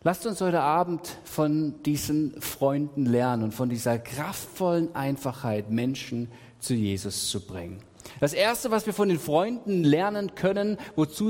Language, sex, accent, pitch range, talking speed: German, male, German, 120-185 Hz, 150 wpm